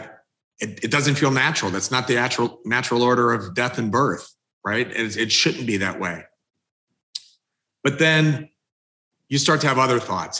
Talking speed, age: 165 wpm, 40-59